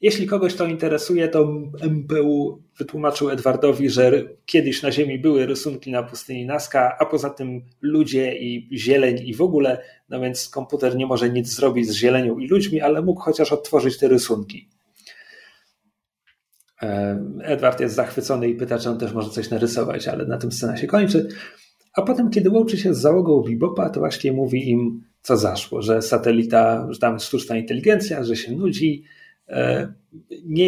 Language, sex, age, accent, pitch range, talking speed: Polish, male, 40-59, native, 125-165 Hz, 165 wpm